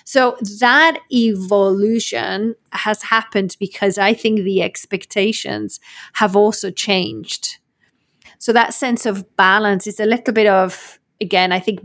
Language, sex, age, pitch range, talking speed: English, female, 30-49, 185-220 Hz, 130 wpm